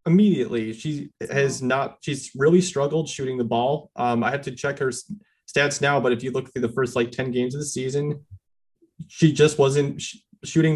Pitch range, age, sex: 120-145 Hz, 30-49, male